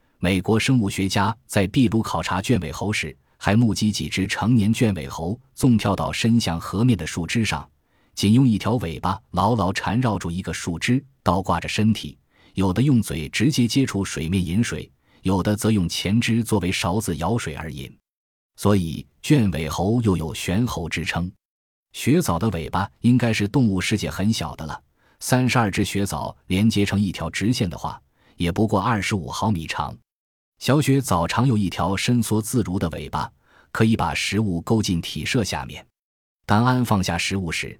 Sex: male